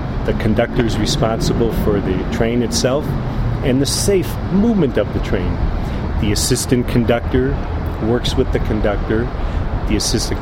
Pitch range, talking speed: 100-115 Hz, 130 wpm